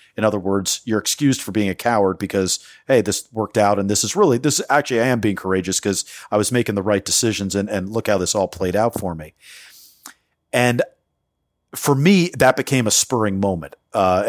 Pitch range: 95-115 Hz